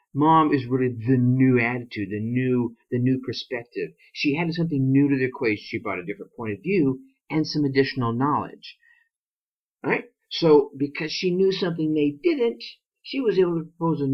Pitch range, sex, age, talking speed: 120-160 Hz, male, 50-69, 185 wpm